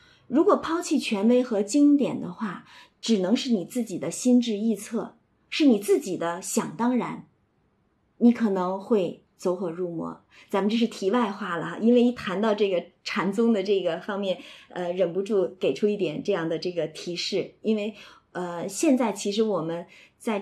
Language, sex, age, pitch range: Chinese, female, 20-39, 190-250 Hz